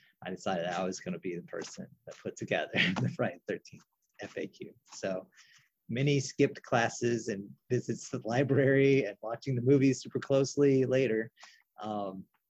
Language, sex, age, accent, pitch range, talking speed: English, male, 30-49, American, 110-140 Hz, 155 wpm